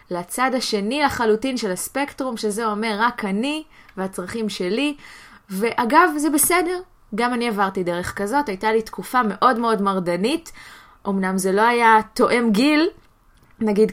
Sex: female